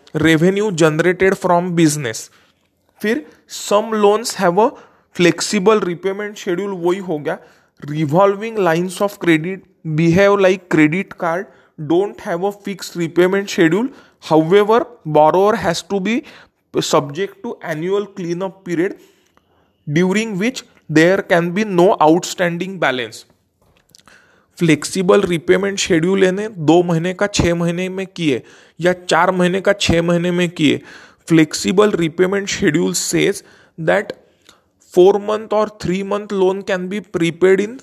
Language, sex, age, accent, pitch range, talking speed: English, male, 20-39, Indian, 165-205 Hz, 125 wpm